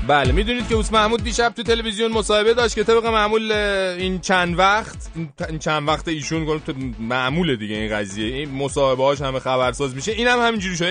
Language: Persian